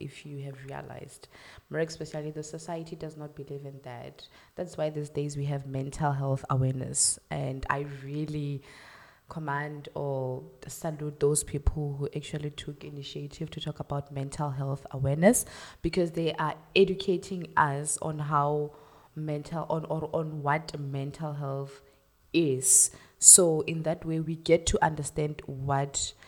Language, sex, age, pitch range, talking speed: English, female, 20-39, 140-165 Hz, 145 wpm